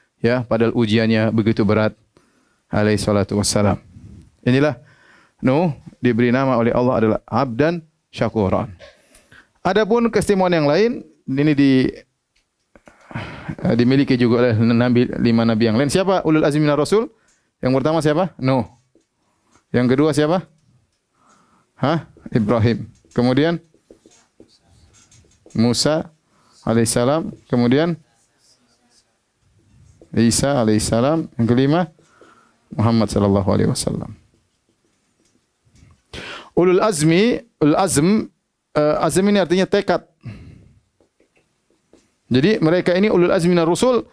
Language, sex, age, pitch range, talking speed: Indonesian, male, 30-49, 115-165 Hz, 100 wpm